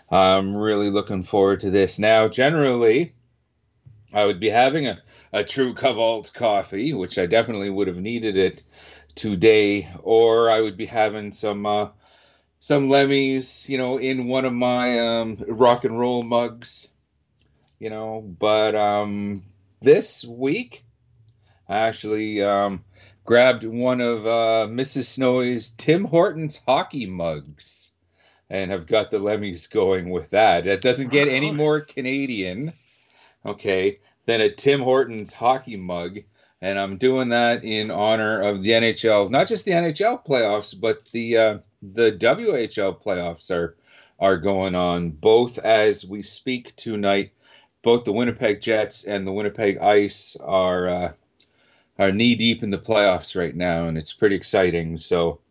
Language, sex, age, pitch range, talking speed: English, male, 40-59, 100-125 Hz, 150 wpm